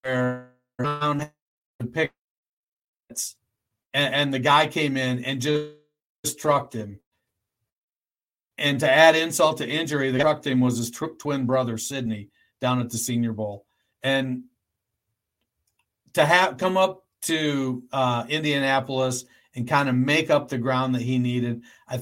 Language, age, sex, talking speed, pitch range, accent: English, 50-69, male, 135 wpm, 125-150 Hz, American